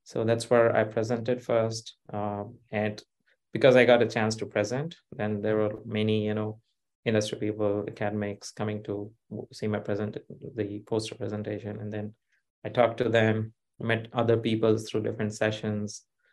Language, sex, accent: English, male, Indian